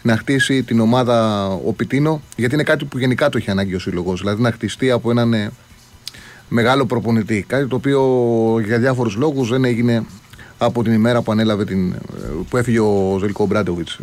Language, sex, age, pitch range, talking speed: Greek, male, 30-49, 105-130 Hz, 180 wpm